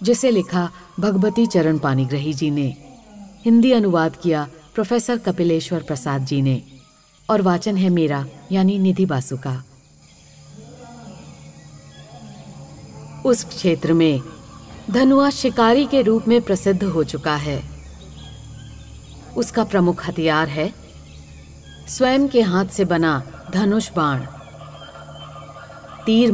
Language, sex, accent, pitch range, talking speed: Hindi, female, native, 145-205 Hz, 105 wpm